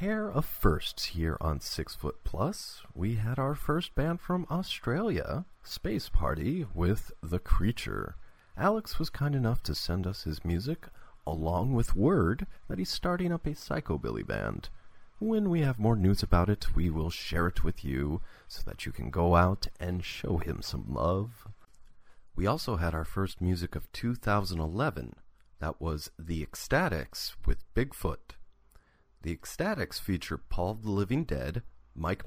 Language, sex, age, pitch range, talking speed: English, male, 40-59, 80-120 Hz, 160 wpm